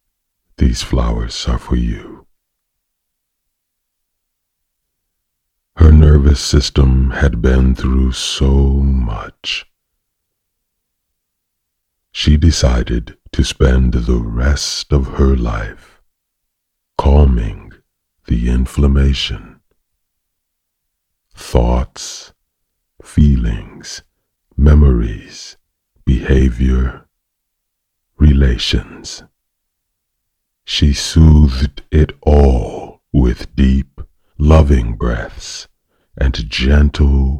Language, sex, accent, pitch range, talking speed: English, male, American, 65-80 Hz, 65 wpm